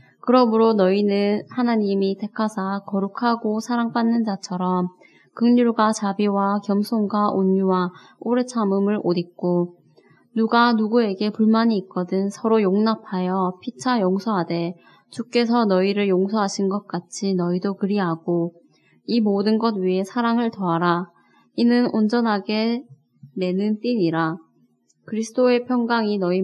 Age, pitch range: 20-39, 185-230 Hz